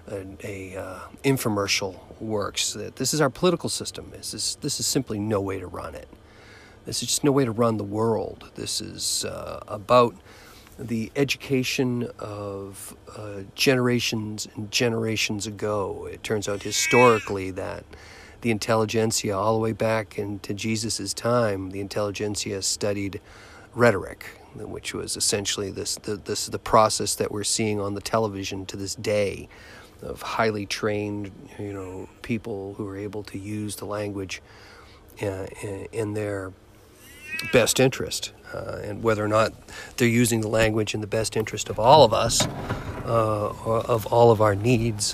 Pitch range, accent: 100-115 Hz, American